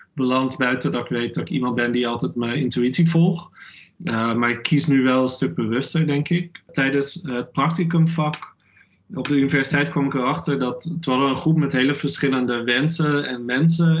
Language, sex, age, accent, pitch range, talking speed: English, male, 20-39, Dutch, 125-155 Hz, 200 wpm